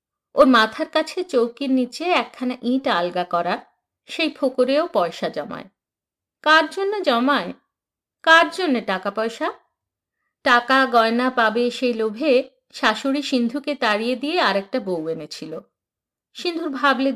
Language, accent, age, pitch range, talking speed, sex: Bengali, native, 50-69, 240-315 Hz, 120 wpm, female